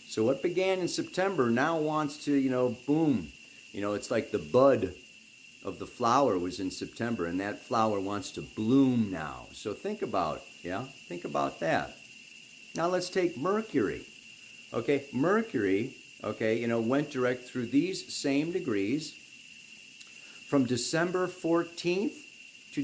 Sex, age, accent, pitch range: male, 50-69, American, 100-150 Hz